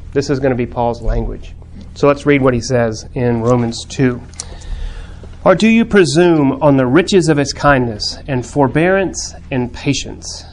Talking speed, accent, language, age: 170 wpm, American, English, 30-49